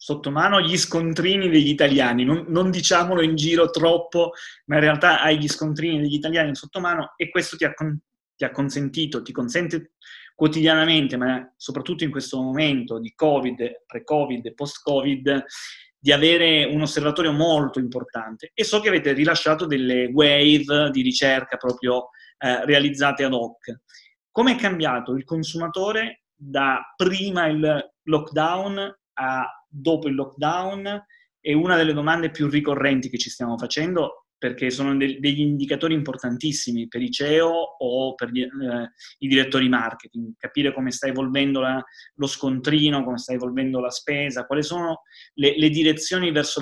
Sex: male